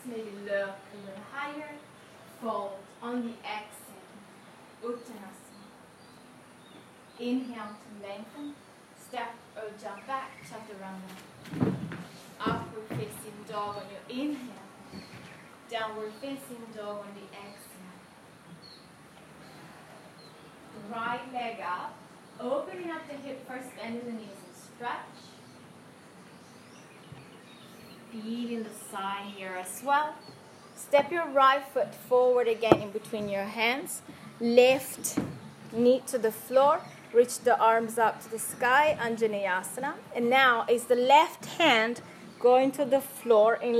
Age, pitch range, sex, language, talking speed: 20-39, 205-255 Hz, female, English, 115 wpm